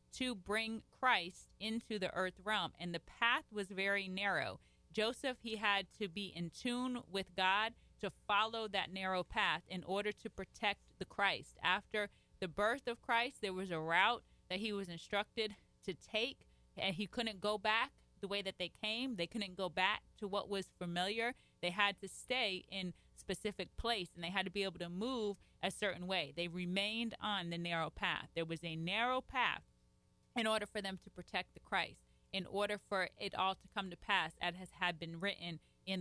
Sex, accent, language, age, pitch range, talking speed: female, American, English, 30-49, 180-215 Hz, 195 wpm